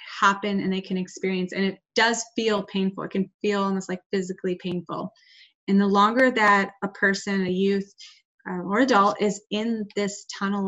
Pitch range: 185-230 Hz